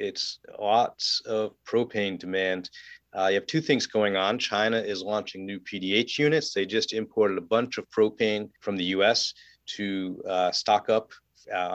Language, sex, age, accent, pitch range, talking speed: English, male, 40-59, American, 100-125 Hz, 170 wpm